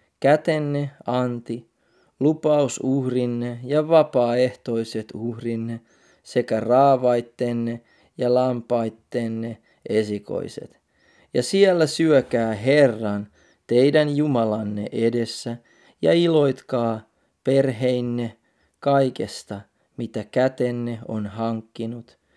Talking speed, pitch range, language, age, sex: 70 wpm, 110-140 Hz, Finnish, 30-49, male